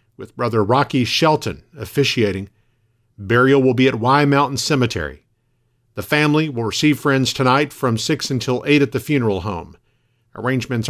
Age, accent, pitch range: 50-69, American, 115-140 Hz